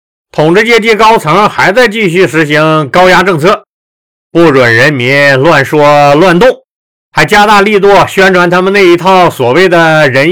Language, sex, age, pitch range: Chinese, male, 50-69, 145-220 Hz